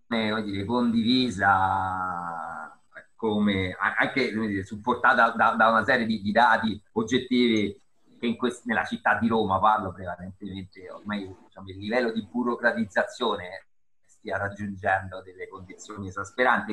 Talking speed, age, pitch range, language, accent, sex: 130 wpm, 30-49, 100-115 Hz, Italian, native, male